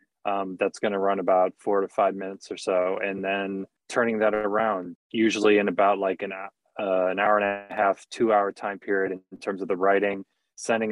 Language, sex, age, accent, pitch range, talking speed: English, male, 20-39, American, 95-110 Hz, 215 wpm